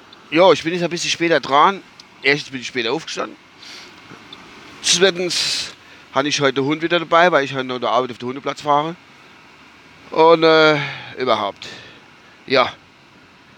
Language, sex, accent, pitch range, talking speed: German, male, German, 125-175 Hz, 155 wpm